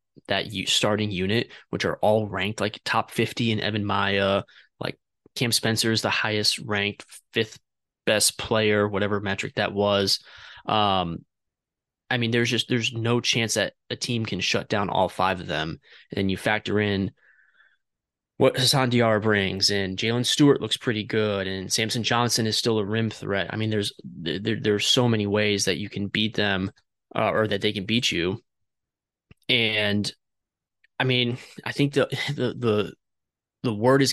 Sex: male